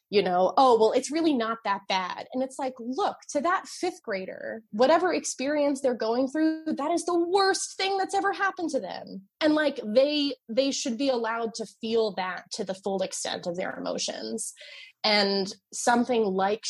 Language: English